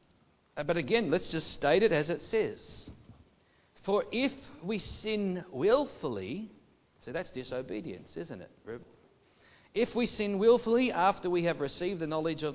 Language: English